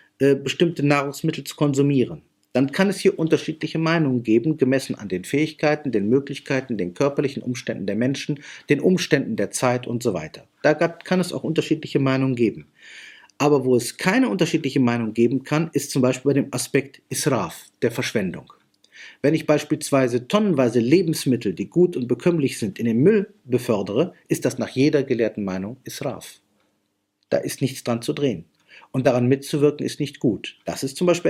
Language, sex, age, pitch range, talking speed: German, male, 50-69, 120-155 Hz, 175 wpm